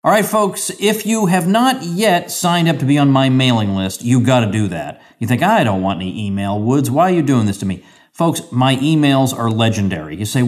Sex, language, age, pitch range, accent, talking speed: male, English, 40-59, 110-145 Hz, American, 245 wpm